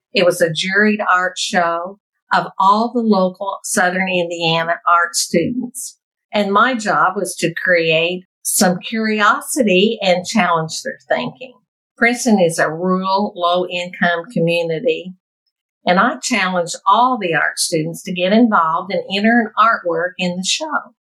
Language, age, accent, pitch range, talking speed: English, 50-69, American, 175-220 Hz, 140 wpm